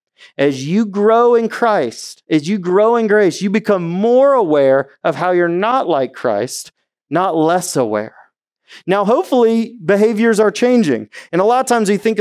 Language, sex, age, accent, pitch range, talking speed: English, male, 30-49, American, 130-200 Hz, 170 wpm